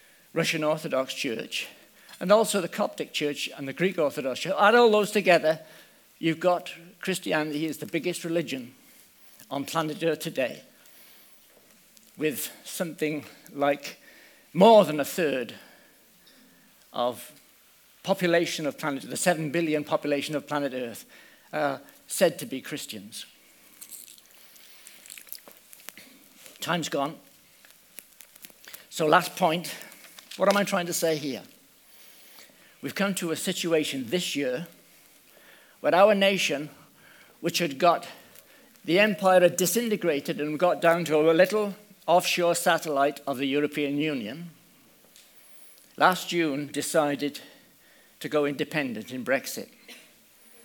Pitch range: 150-195 Hz